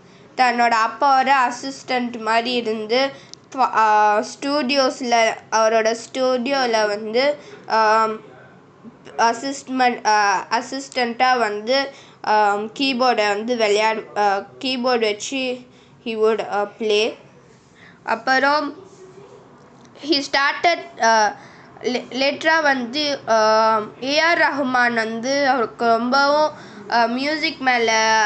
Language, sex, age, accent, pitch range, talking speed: Tamil, female, 20-39, native, 220-265 Hz, 65 wpm